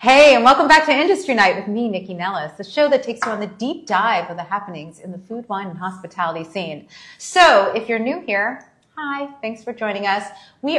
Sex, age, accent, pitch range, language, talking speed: female, 40-59, American, 175-220 Hz, English, 230 wpm